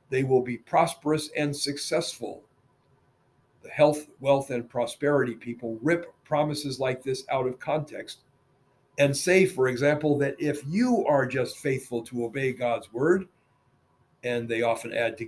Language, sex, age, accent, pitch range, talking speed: English, male, 50-69, American, 125-155 Hz, 150 wpm